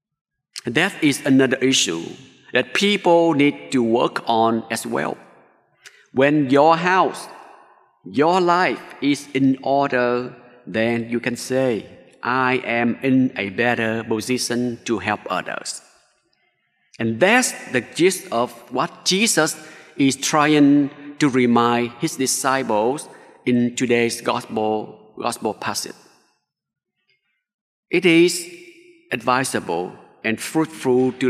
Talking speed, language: 110 wpm, English